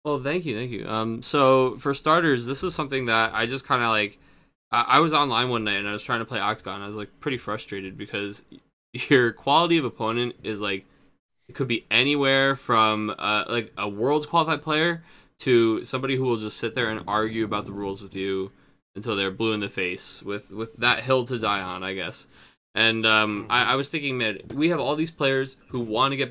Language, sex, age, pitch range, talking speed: English, male, 20-39, 105-135 Hz, 230 wpm